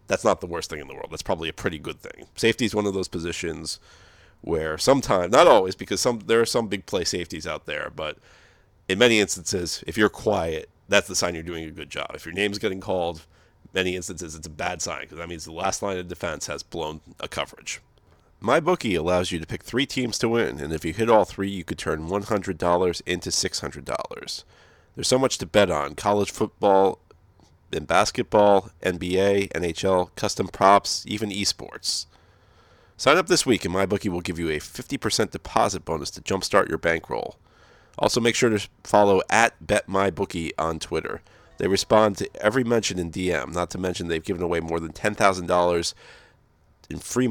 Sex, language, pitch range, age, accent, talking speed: male, English, 85-105 Hz, 40-59, American, 195 wpm